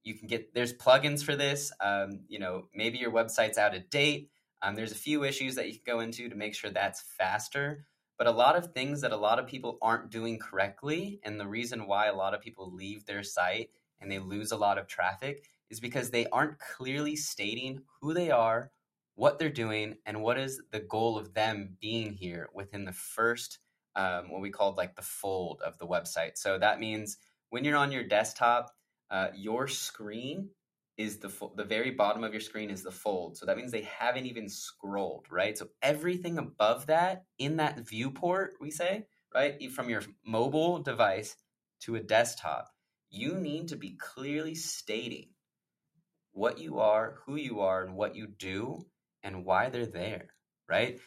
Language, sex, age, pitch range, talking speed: English, male, 20-39, 105-145 Hz, 195 wpm